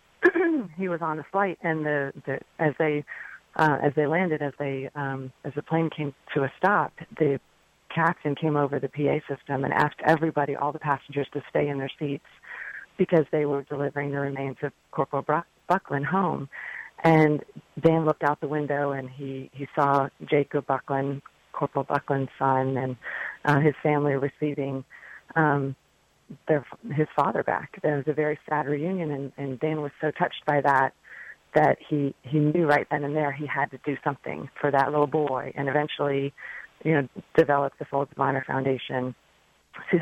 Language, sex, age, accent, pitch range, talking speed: English, female, 40-59, American, 140-160 Hz, 175 wpm